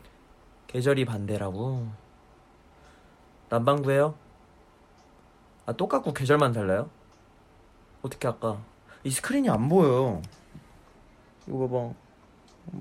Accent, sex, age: native, male, 30-49